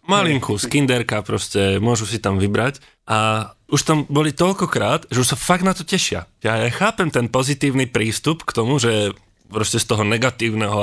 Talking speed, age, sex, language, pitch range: 175 wpm, 20-39, male, Czech, 110-140 Hz